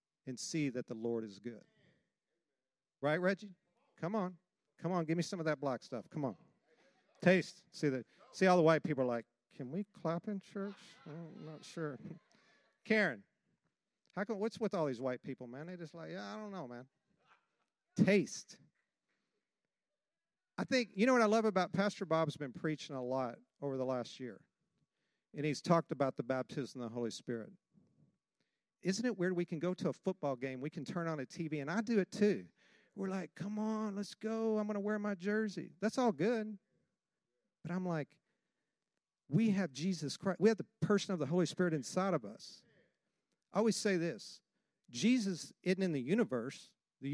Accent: American